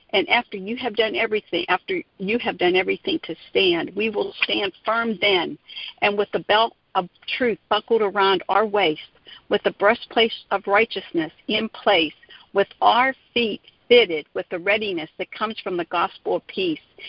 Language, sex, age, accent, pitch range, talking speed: English, female, 50-69, American, 190-235 Hz, 170 wpm